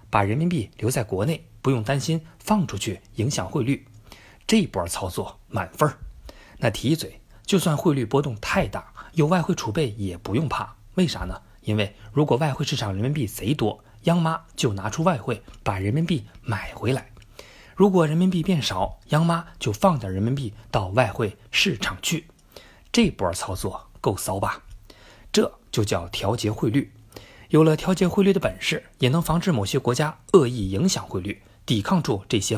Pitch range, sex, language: 105-165 Hz, male, Chinese